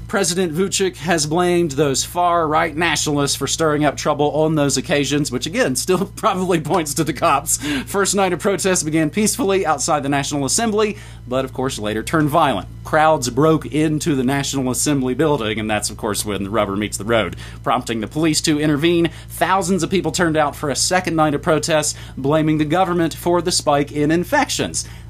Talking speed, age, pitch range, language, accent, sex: 190 wpm, 30-49, 120-175 Hz, English, American, male